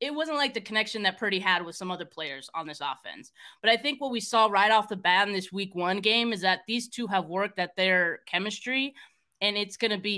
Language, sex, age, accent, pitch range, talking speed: English, female, 20-39, American, 175-220 Hz, 255 wpm